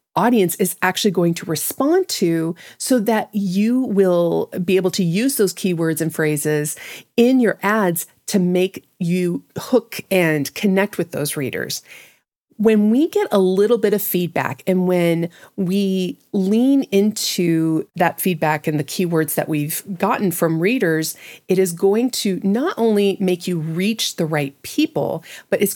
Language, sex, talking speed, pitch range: English, female, 160 wpm, 165-200 Hz